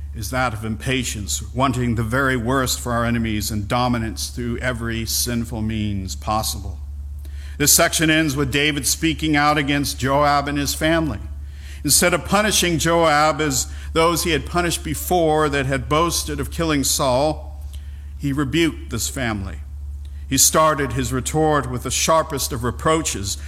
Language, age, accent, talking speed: English, 50-69, American, 150 wpm